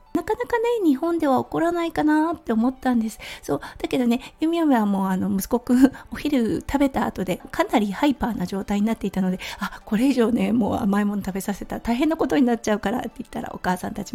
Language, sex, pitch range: Japanese, female, 200-275 Hz